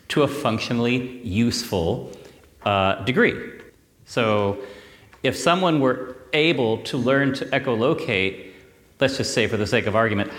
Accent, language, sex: American, Danish, male